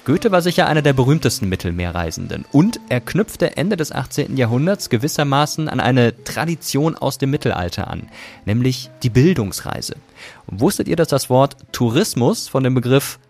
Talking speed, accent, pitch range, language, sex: 155 wpm, German, 105-140 Hz, German, male